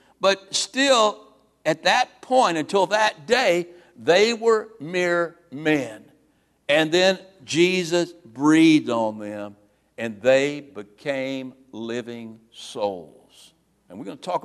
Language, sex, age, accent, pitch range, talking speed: English, male, 60-79, American, 110-155 Hz, 115 wpm